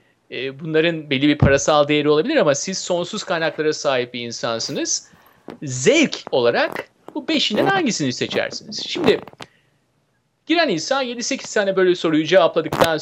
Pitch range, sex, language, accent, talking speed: 155-230 Hz, male, Turkish, native, 130 wpm